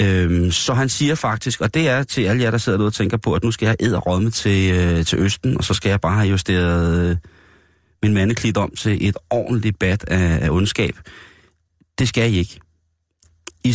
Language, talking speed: Danish, 210 wpm